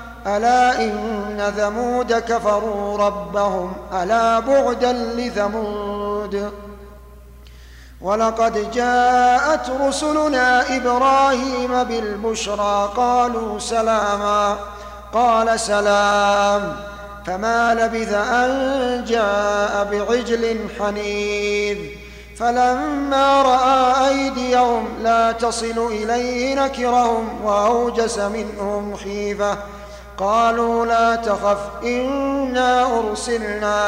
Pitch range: 205-245 Hz